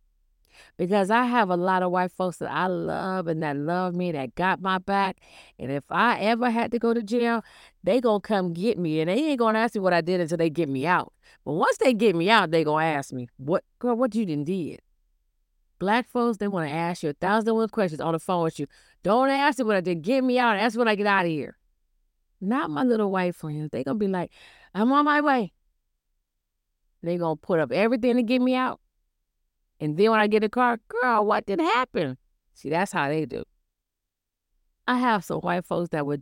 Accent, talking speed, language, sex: American, 240 wpm, English, female